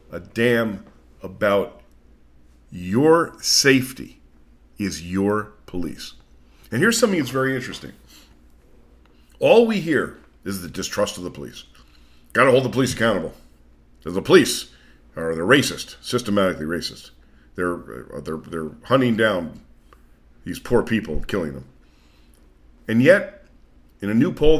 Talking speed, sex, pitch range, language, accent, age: 130 wpm, male, 75-125 Hz, English, American, 50-69